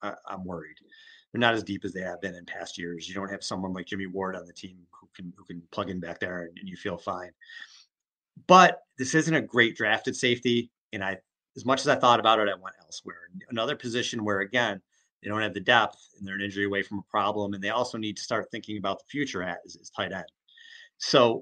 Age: 30-49